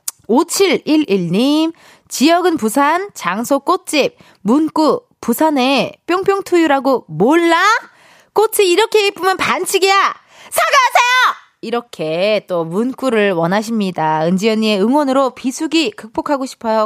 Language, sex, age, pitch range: Korean, female, 20-39, 220-345 Hz